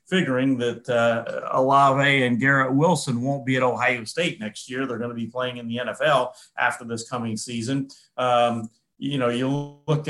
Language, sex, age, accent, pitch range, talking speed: English, male, 40-59, American, 125-155 Hz, 185 wpm